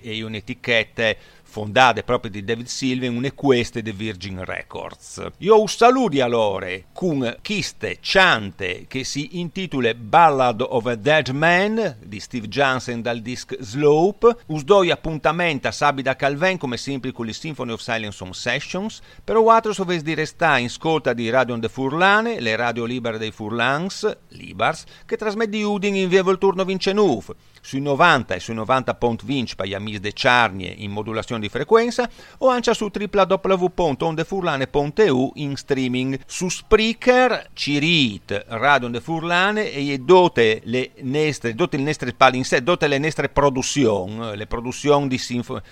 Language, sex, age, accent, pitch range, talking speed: Italian, male, 50-69, native, 115-175 Hz, 145 wpm